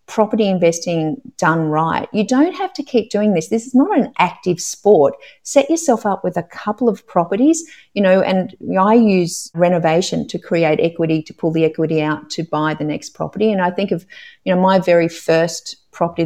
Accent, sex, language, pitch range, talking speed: Australian, female, English, 165-210 Hz, 200 wpm